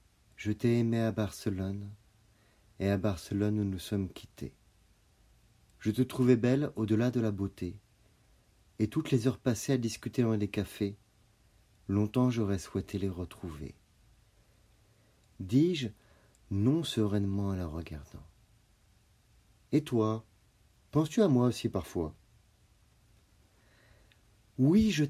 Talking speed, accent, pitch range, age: 120 wpm, French, 100-125 Hz, 40-59